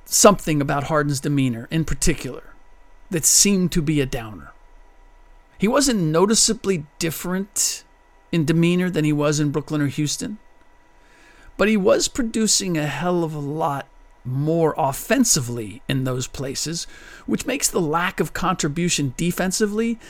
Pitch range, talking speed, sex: 140-195 Hz, 135 wpm, male